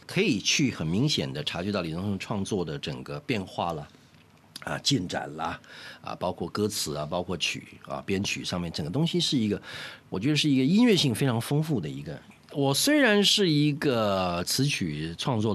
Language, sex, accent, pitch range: Chinese, male, native, 110-175 Hz